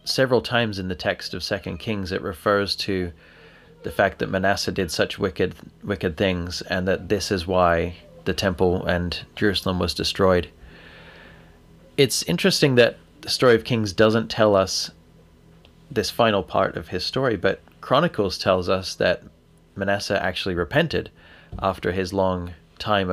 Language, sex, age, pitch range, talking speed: English, male, 30-49, 90-105 Hz, 155 wpm